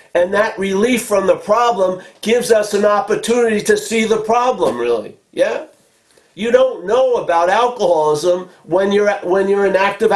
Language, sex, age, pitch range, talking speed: English, male, 50-69, 175-240 Hz, 160 wpm